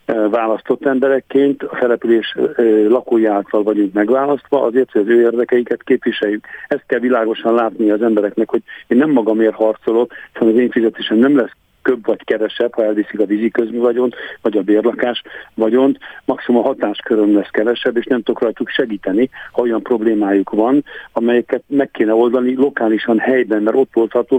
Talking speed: 155 wpm